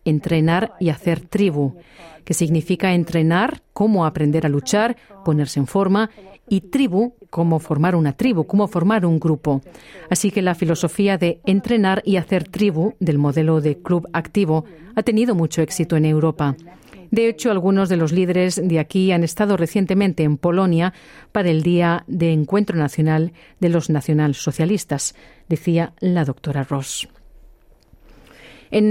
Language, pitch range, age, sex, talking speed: Spanish, 160-205 Hz, 40-59, female, 145 wpm